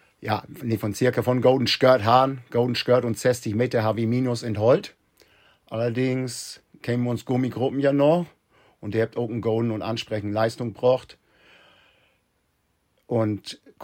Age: 50-69